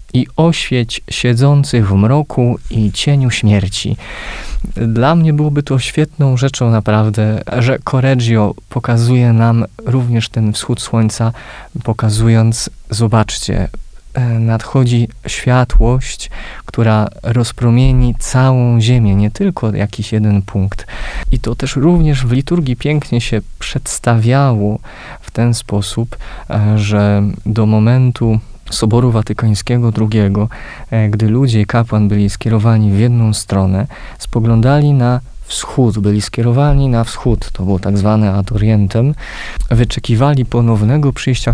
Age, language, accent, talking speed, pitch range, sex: 20-39, Polish, native, 115 wpm, 105-125 Hz, male